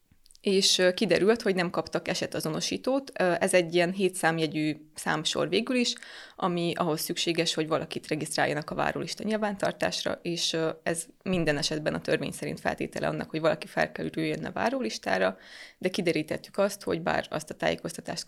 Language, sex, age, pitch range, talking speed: Hungarian, female, 20-39, 165-195 Hz, 150 wpm